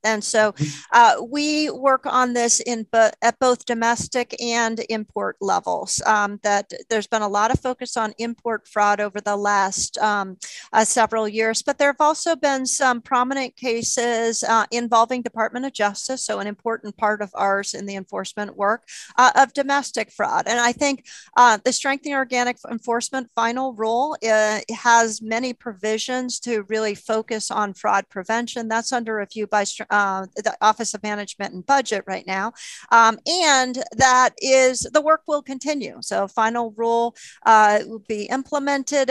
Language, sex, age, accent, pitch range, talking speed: English, female, 40-59, American, 210-245 Hz, 165 wpm